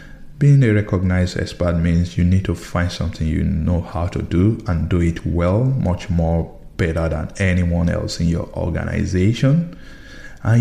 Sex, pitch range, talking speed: male, 90-110 Hz, 165 wpm